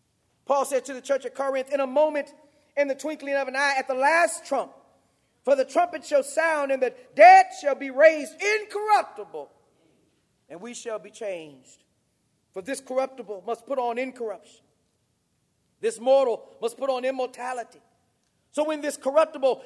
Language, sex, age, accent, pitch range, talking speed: English, male, 40-59, American, 255-365 Hz, 165 wpm